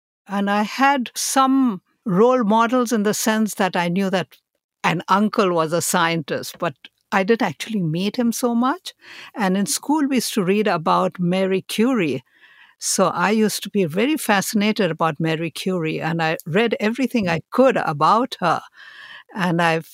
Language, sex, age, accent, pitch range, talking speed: English, female, 60-79, Indian, 175-225 Hz, 170 wpm